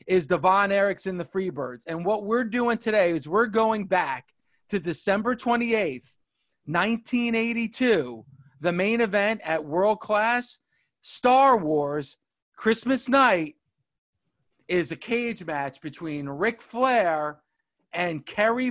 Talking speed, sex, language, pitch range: 130 wpm, male, English, 170-235 Hz